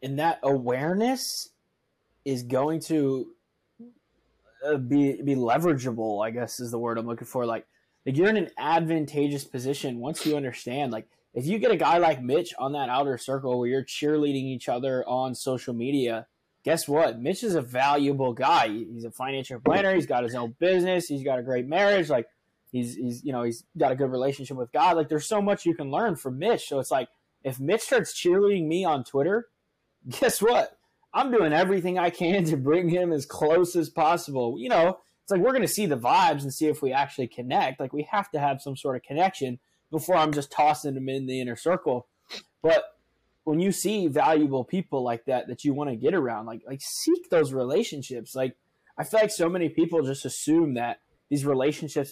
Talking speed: 205 wpm